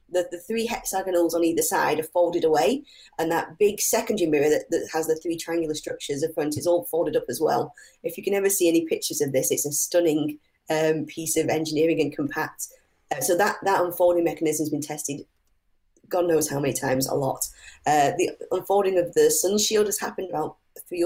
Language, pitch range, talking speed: English, 155-200 Hz, 215 wpm